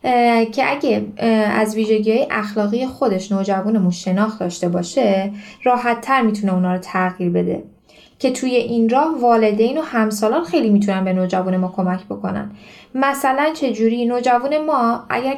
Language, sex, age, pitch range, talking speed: Persian, female, 10-29, 205-270 Hz, 140 wpm